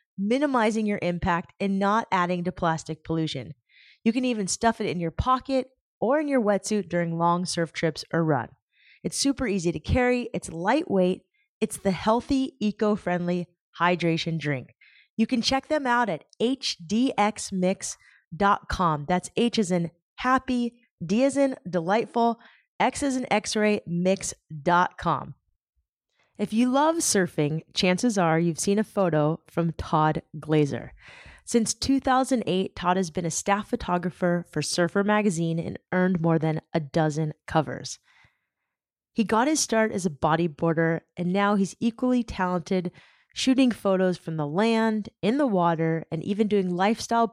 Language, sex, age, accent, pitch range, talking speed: English, female, 30-49, American, 170-225 Hz, 145 wpm